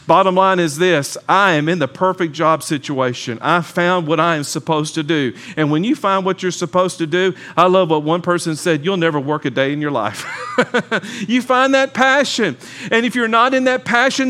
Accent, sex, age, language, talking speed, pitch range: American, male, 50-69, English, 225 wpm, 170-230 Hz